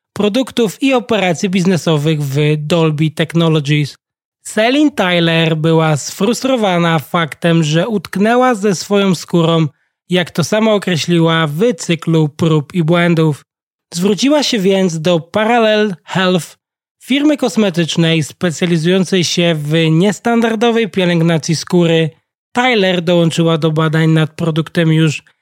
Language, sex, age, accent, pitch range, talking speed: Polish, male, 20-39, native, 160-200 Hz, 110 wpm